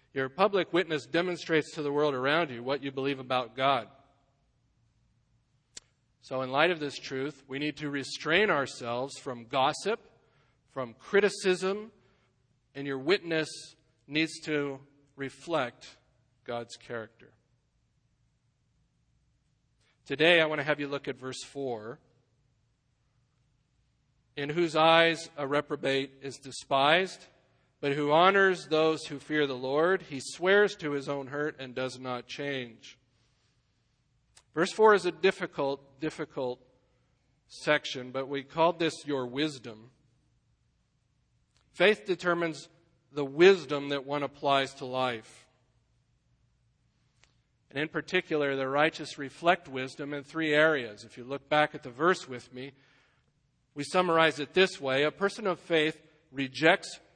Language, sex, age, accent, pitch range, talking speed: English, male, 40-59, American, 130-160 Hz, 130 wpm